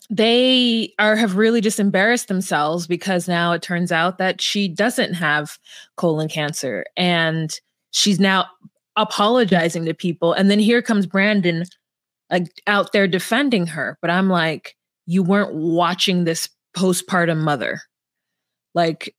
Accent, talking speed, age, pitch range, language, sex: American, 140 wpm, 20-39, 175-225 Hz, English, female